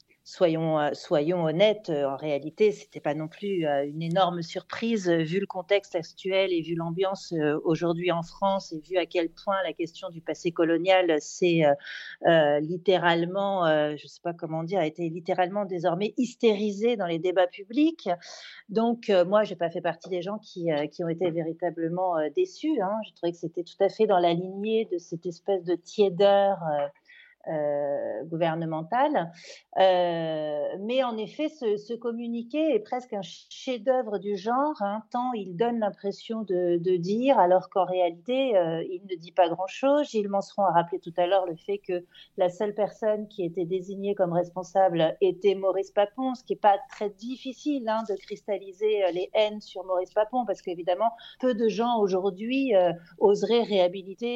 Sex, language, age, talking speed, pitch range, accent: female, French, 40-59, 185 wpm, 175-215 Hz, French